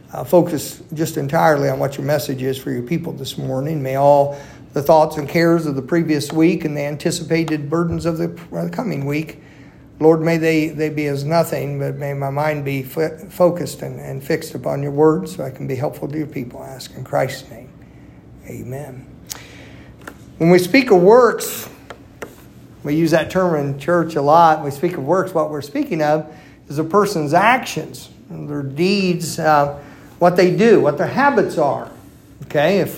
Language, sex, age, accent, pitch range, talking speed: English, male, 50-69, American, 140-170 Hz, 190 wpm